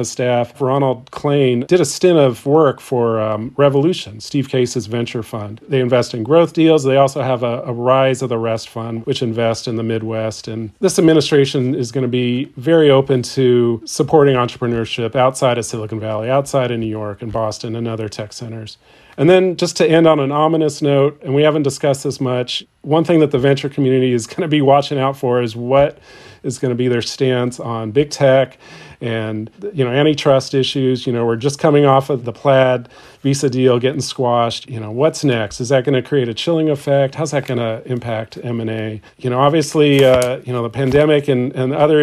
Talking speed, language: 210 wpm, English